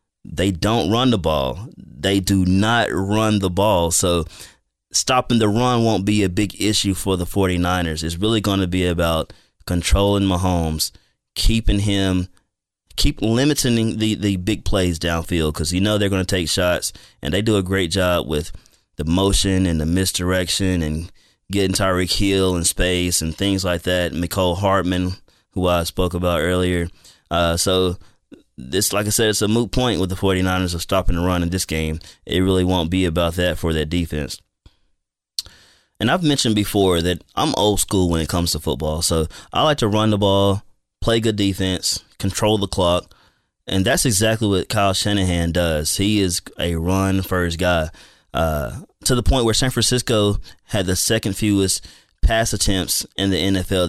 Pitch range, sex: 85-105 Hz, male